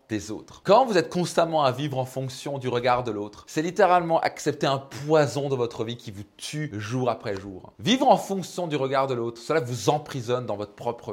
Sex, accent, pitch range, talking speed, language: male, French, 130-190 Hz, 220 wpm, French